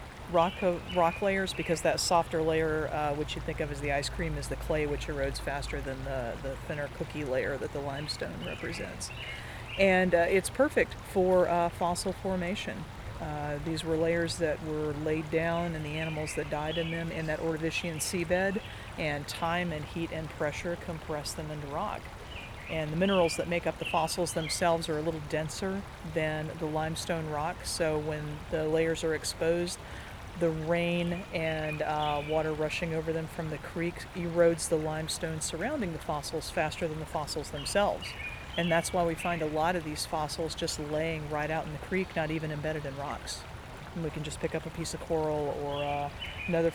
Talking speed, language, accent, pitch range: 190 wpm, English, American, 150-170 Hz